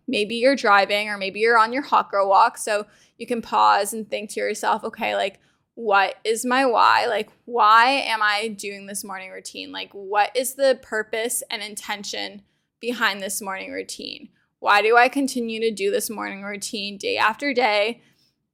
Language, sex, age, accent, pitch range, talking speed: English, female, 10-29, American, 205-255 Hz, 180 wpm